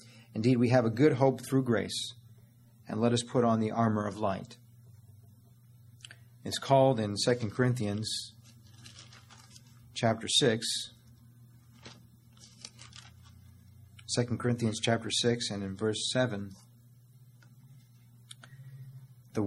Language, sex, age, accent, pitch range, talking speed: English, male, 40-59, American, 115-120 Hz, 100 wpm